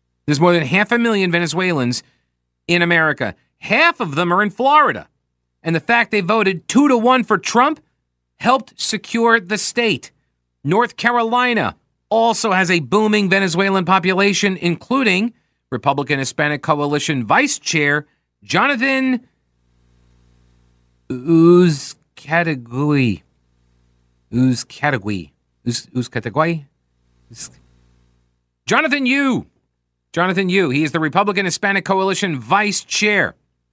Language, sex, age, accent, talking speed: English, male, 40-59, American, 105 wpm